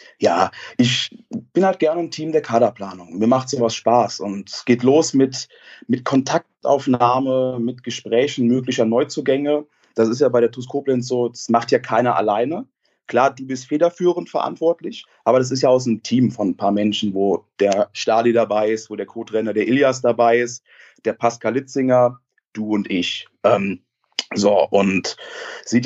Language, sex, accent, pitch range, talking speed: German, male, German, 115-140 Hz, 175 wpm